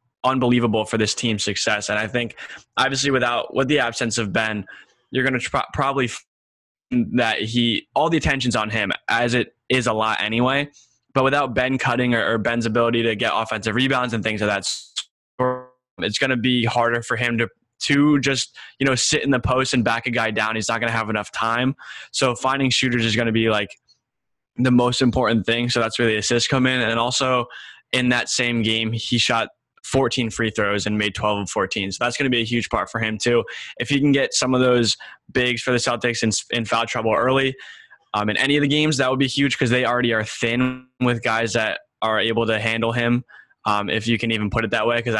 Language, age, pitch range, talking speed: English, 10-29, 110-125 Hz, 230 wpm